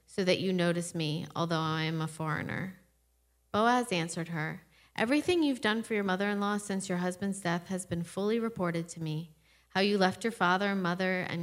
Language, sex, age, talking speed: English, female, 40-59, 195 wpm